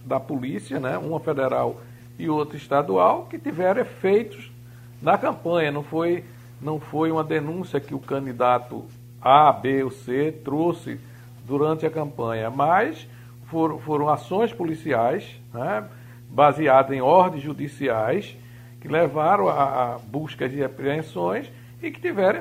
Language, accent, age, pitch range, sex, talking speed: Portuguese, Brazilian, 60-79, 120-160 Hz, male, 135 wpm